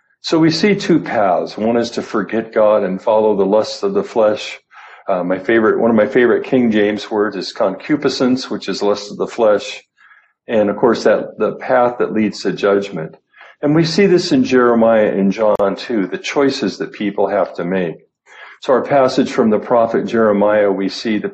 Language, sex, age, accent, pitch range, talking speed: English, male, 50-69, American, 105-140 Hz, 200 wpm